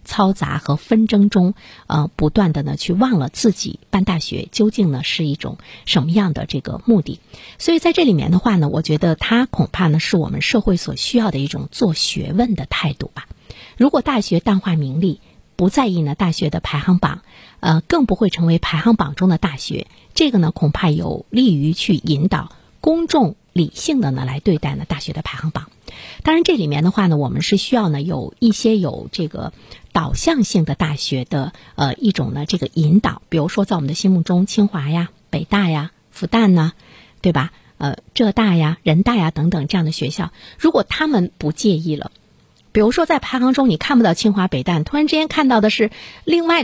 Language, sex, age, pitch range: Chinese, female, 50-69, 155-215 Hz